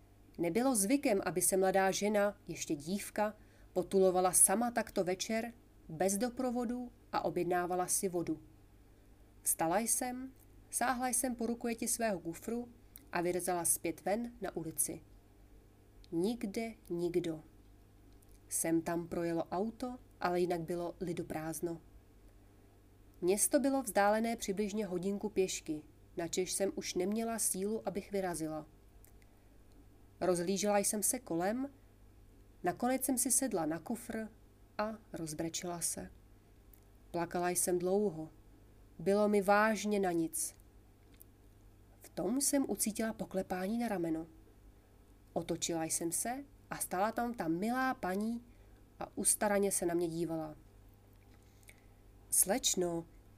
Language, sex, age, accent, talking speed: Czech, female, 30-49, native, 110 wpm